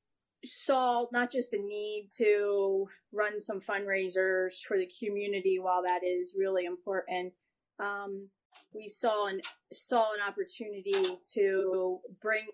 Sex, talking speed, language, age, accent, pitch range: female, 125 wpm, English, 30-49, American, 190-240 Hz